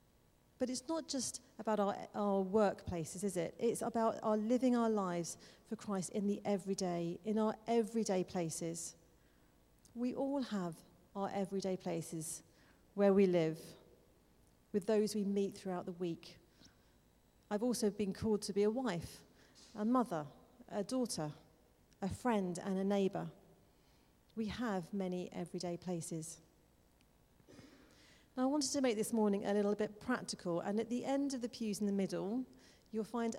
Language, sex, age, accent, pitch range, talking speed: English, female, 40-59, British, 185-230 Hz, 155 wpm